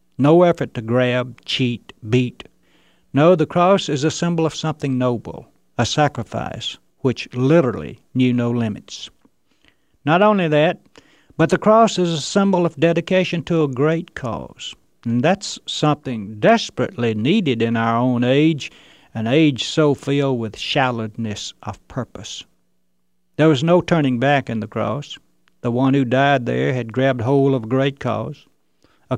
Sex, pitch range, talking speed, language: male, 115-155 Hz, 155 wpm, English